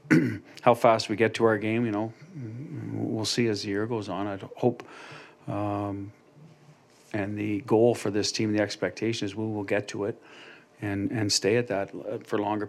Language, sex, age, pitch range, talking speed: English, male, 40-59, 100-120 Hz, 190 wpm